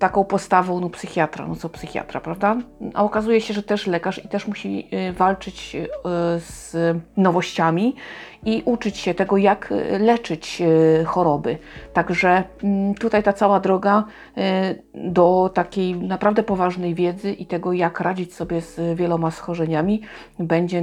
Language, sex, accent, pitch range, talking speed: Polish, female, native, 165-205 Hz, 135 wpm